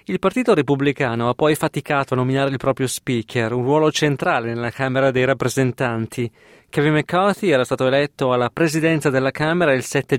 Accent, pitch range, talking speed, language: native, 130-165 Hz, 170 wpm, Italian